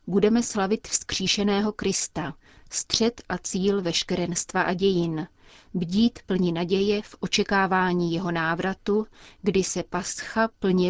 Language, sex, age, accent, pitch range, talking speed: Czech, female, 30-49, native, 175-210 Hz, 115 wpm